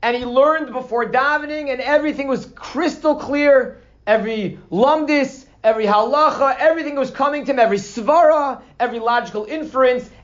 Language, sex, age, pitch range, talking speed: English, male, 40-59, 240-290 Hz, 140 wpm